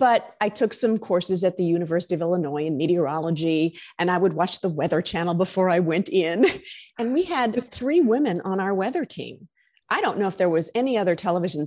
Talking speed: 210 wpm